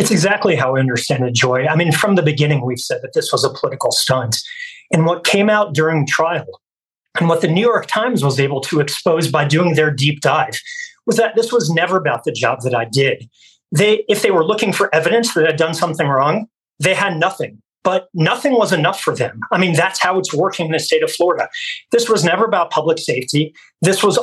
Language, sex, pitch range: English, male, 160-220 Hz